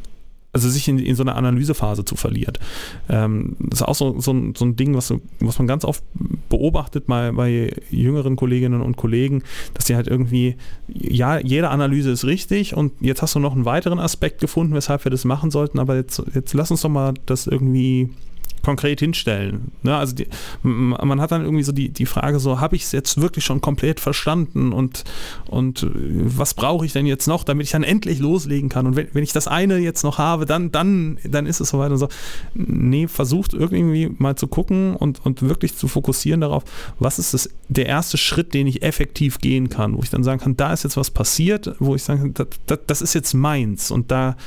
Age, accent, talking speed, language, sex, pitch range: 30-49, German, 215 wpm, German, male, 125-150 Hz